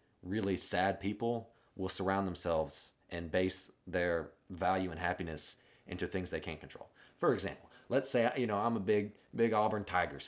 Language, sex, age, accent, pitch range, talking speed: English, male, 30-49, American, 85-105 Hz, 170 wpm